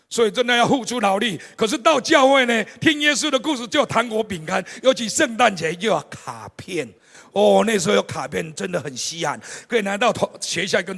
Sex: male